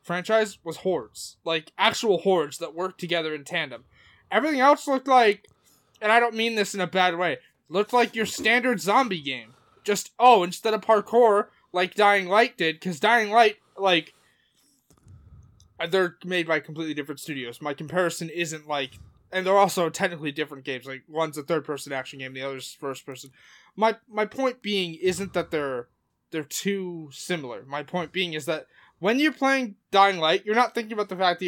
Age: 20-39